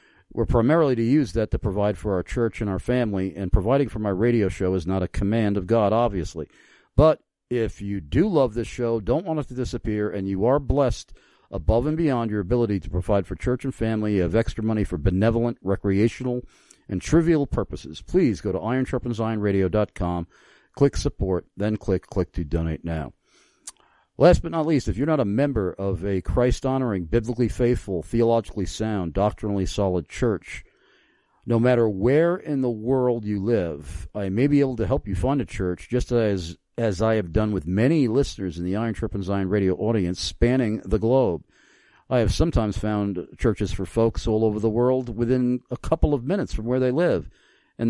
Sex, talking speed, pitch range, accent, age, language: male, 190 wpm, 95-125 Hz, American, 50-69, English